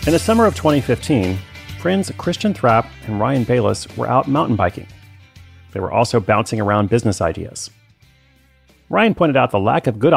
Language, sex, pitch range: English, male, 105-130 Hz